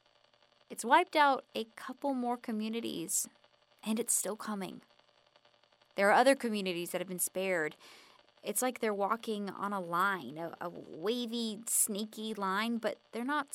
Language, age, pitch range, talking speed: English, 20-39, 195-255 Hz, 150 wpm